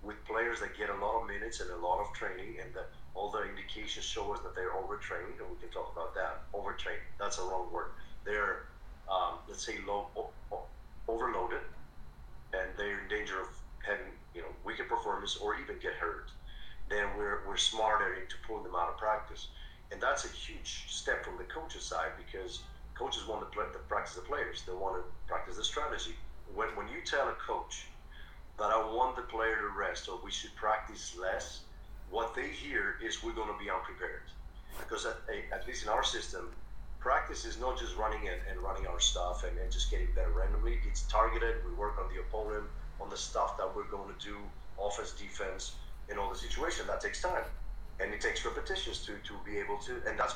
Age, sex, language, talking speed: 40-59, male, Croatian, 205 wpm